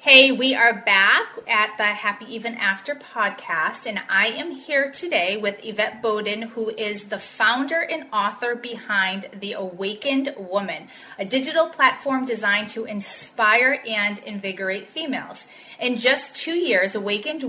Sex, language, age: female, English, 30-49